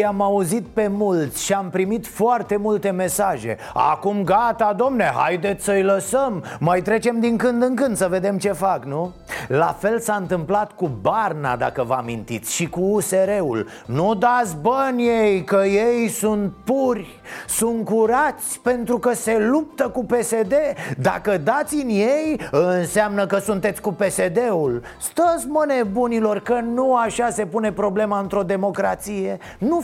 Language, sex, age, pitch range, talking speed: Romanian, male, 30-49, 180-235 Hz, 150 wpm